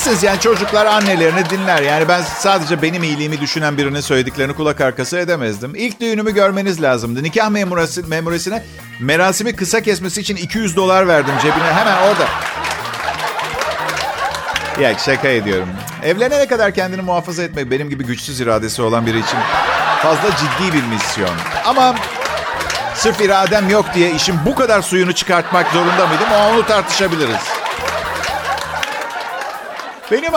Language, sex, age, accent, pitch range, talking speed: Turkish, male, 50-69, native, 145-205 Hz, 130 wpm